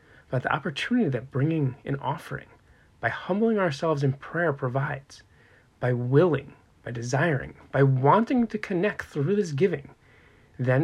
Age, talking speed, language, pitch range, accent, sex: 30-49, 140 wpm, English, 130-175 Hz, American, male